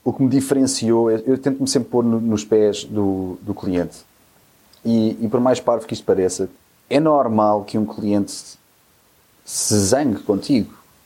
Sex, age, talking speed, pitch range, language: male, 30-49, 170 wpm, 105-135 Hz, English